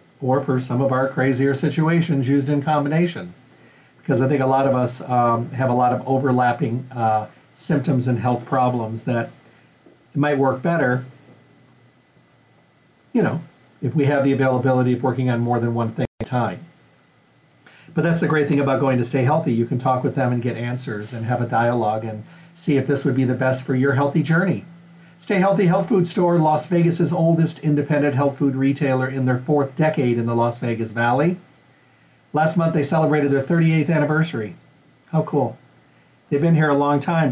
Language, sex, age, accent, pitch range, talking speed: English, male, 50-69, American, 125-155 Hz, 190 wpm